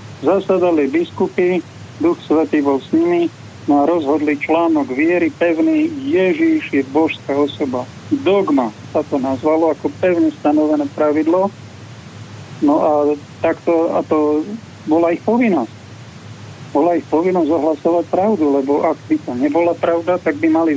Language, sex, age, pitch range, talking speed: Slovak, male, 40-59, 145-180 Hz, 135 wpm